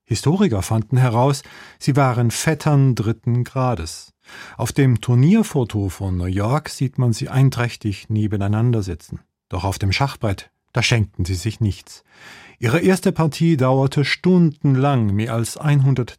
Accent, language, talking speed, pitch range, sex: German, German, 135 wpm, 105-140 Hz, male